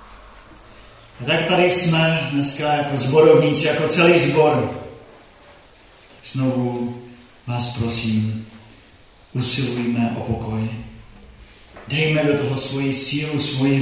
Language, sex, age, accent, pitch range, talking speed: Czech, male, 40-59, native, 110-145 Hz, 95 wpm